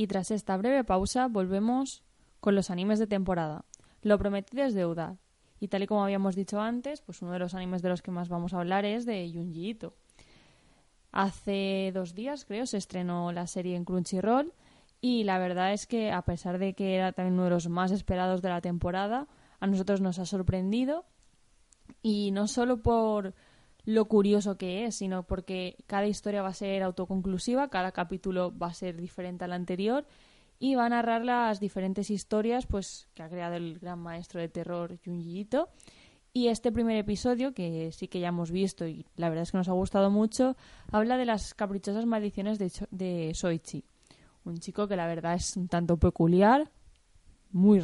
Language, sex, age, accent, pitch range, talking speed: Spanish, female, 20-39, Spanish, 180-215 Hz, 190 wpm